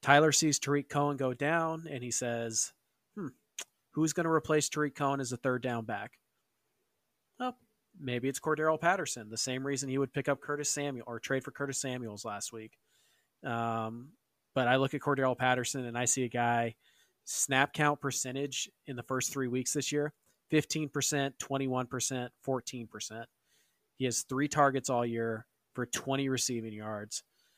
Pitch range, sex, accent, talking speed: 120-145 Hz, male, American, 170 wpm